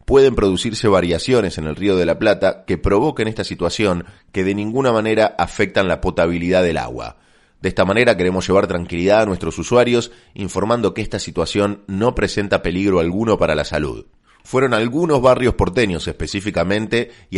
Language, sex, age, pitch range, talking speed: Spanish, male, 30-49, 85-115 Hz, 165 wpm